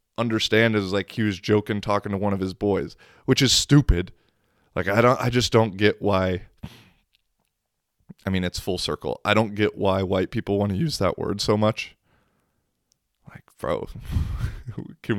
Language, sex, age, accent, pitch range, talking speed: English, male, 20-39, American, 100-120 Hz, 175 wpm